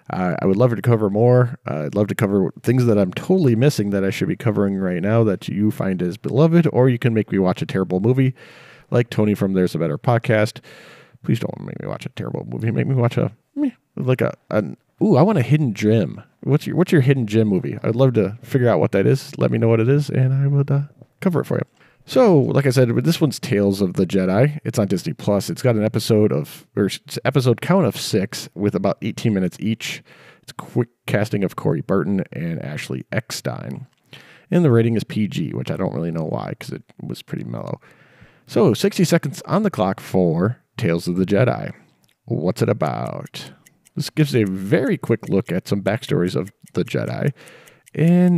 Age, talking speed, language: 40-59, 215 wpm, English